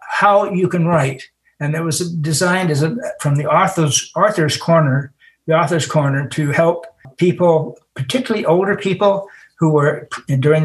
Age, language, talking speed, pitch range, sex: 60-79, English, 150 wpm, 135-165 Hz, male